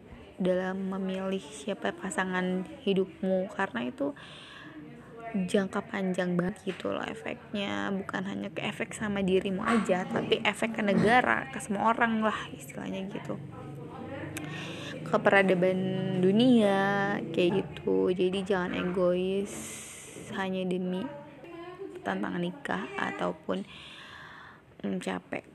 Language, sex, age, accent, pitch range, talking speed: Indonesian, female, 20-39, native, 180-220 Hz, 105 wpm